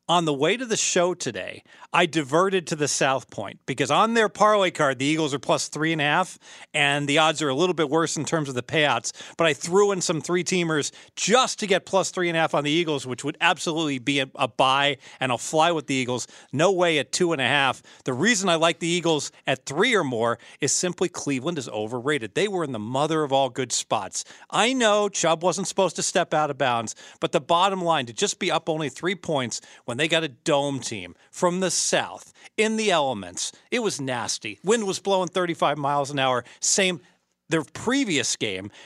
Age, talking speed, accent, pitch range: 40-59, 225 wpm, American, 135-175 Hz